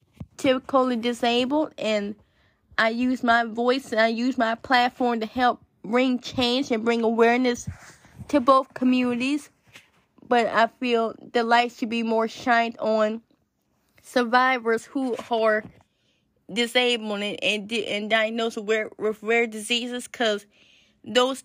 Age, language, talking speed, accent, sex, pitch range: 20-39, English, 130 wpm, American, female, 225-250 Hz